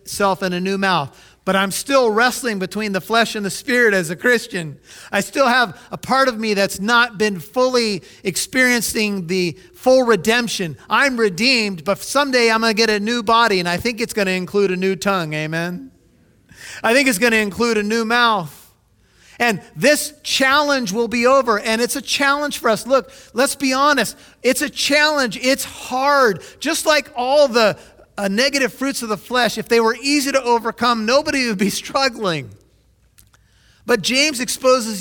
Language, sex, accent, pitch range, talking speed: English, male, American, 160-245 Hz, 185 wpm